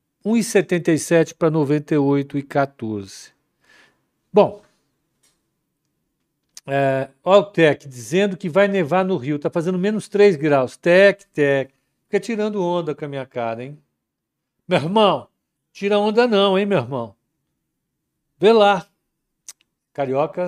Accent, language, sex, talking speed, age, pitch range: Brazilian, Portuguese, male, 110 wpm, 60-79, 125-175 Hz